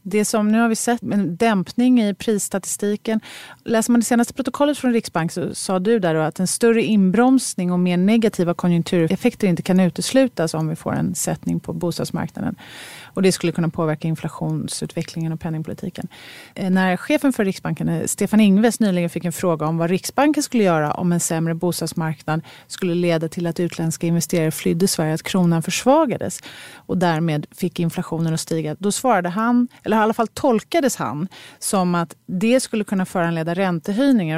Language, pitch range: Swedish, 165-215 Hz